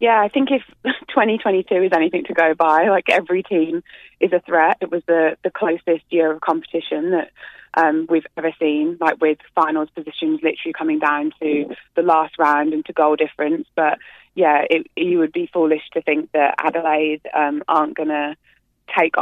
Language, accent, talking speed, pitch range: English, British, 190 wpm, 150-170 Hz